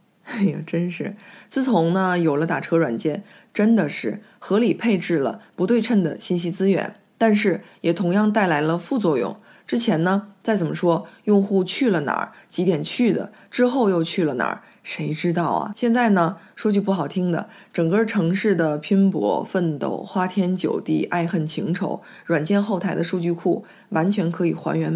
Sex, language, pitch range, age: female, Chinese, 170-210 Hz, 20-39